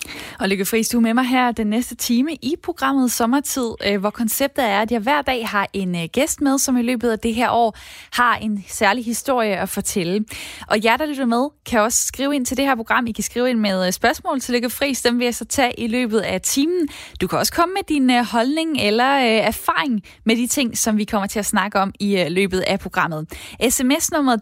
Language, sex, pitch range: Danish, female, 205-255 Hz